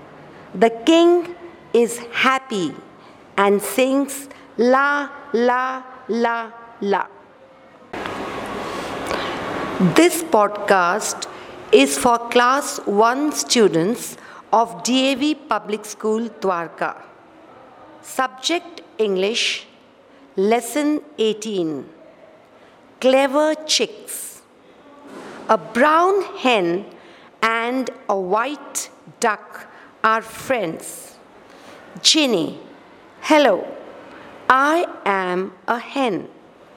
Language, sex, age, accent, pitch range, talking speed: English, female, 50-69, Indian, 205-280 Hz, 70 wpm